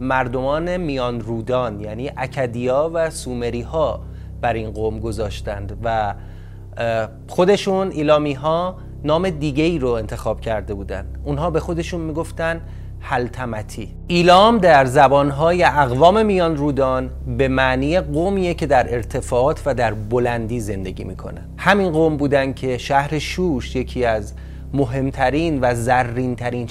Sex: male